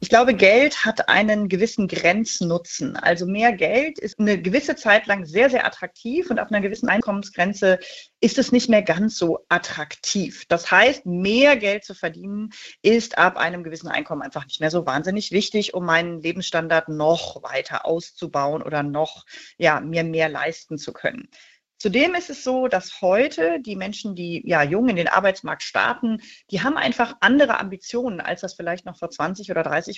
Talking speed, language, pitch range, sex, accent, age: 180 wpm, German, 170-220 Hz, female, German, 30-49